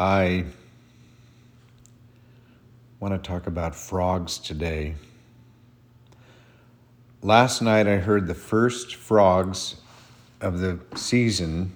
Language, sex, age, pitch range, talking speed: English, male, 50-69, 95-120 Hz, 85 wpm